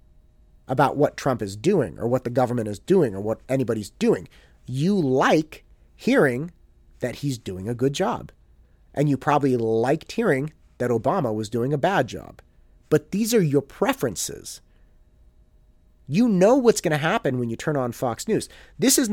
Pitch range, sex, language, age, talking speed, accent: 110-165 Hz, male, English, 30-49, 175 wpm, American